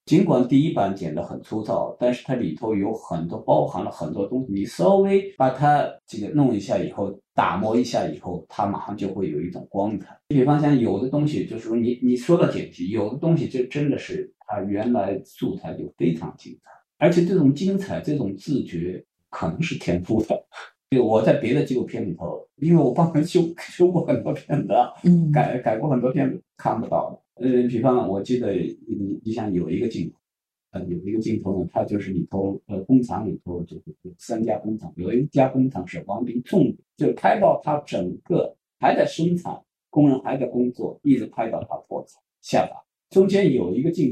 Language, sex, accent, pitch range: Chinese, male, native, 110-155 Hz